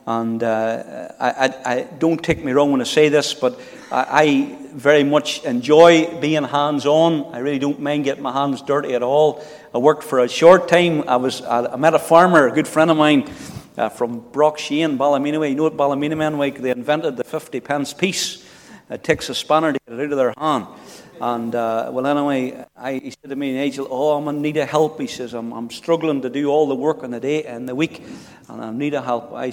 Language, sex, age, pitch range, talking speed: English, male, 50-69, 125-155 Hz, 225 wpm